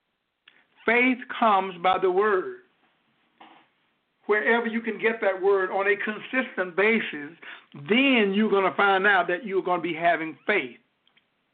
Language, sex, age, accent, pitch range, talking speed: English, male, 60-79, American, 190-245 Hz, 145 wpm